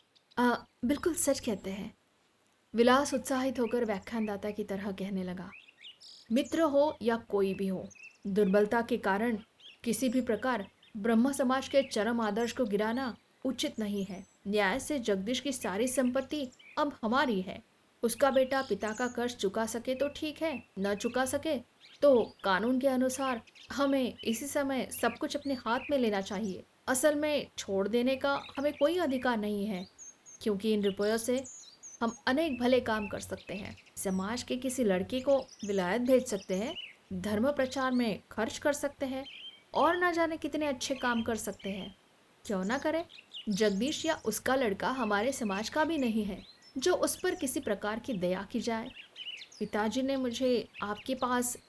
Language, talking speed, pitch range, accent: Hindi, 165 wpm, 210-270 Hz, native